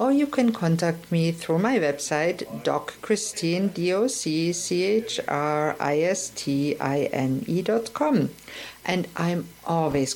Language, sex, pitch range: English, female, 145-215 Hz